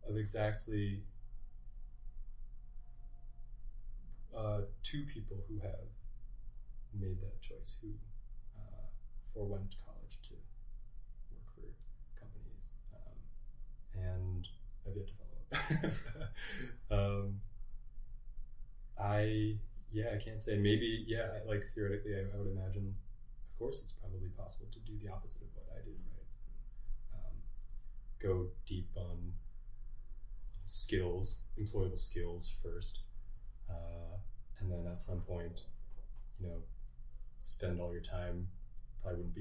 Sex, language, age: male, English, 20-39